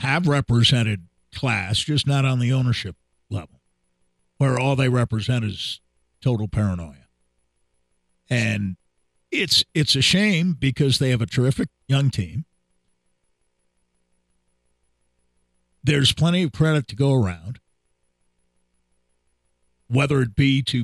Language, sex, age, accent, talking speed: English, male, 50-69, American, 110 wpm